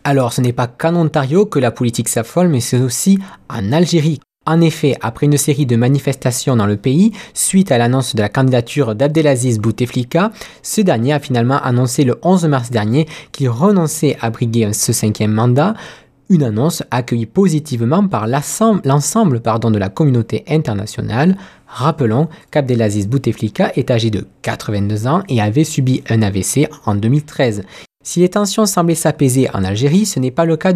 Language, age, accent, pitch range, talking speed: French, 20-39, French, 120-165 Hz, 170 wpm